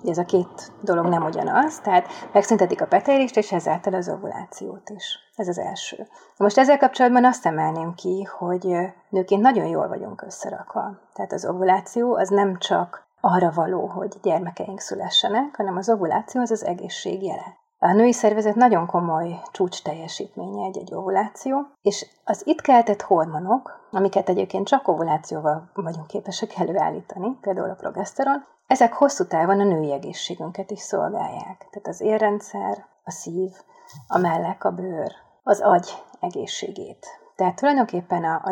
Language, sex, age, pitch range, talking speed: Hungarian, female, 30-49, 180-230 Hz, 150 wpm